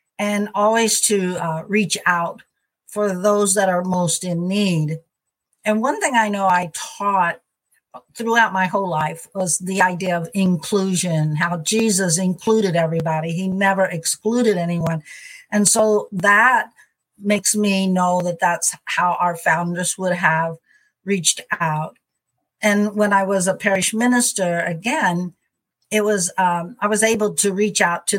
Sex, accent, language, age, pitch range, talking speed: female, American, English, 60-79, 170-205 Hz, 150 wpm